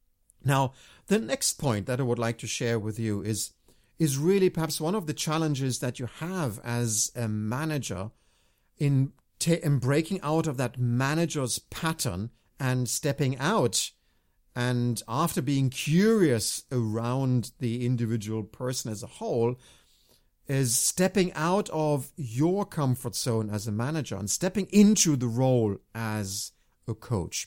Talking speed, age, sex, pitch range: 145 wpm, 50-69, male, 115-155 Hz